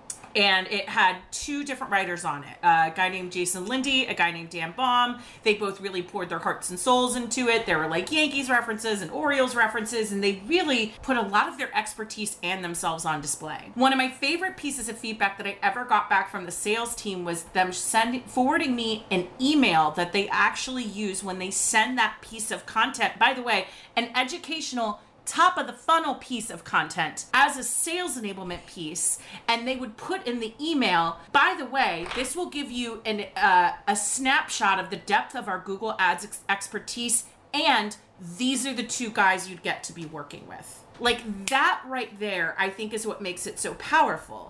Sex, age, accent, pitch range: female, 30-49, American, 195-260 Hz